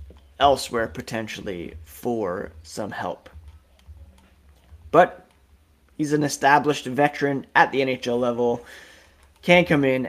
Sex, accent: male, American